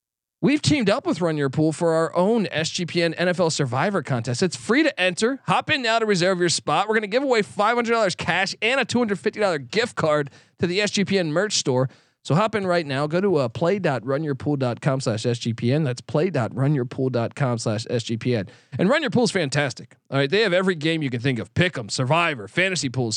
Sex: male